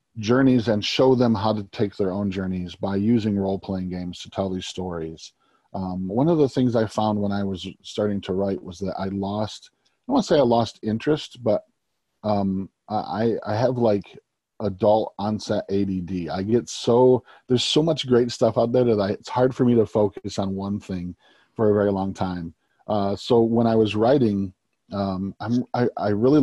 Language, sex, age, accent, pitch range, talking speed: English, male, 40-59, American, 95-115 Hz, 205 wpm